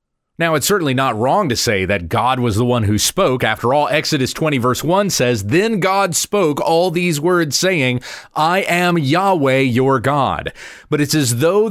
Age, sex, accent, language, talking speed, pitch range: 30-49, male, American, English, 190 wpm, 125-165 Hz